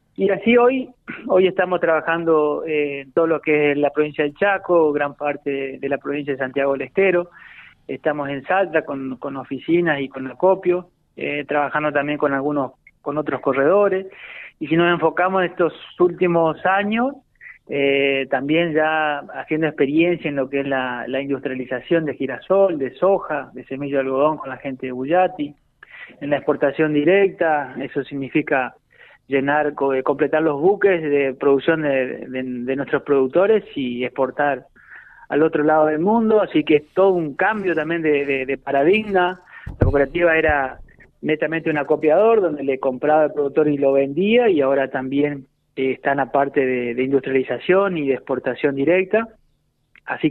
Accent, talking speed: Argentinian, 165 wpm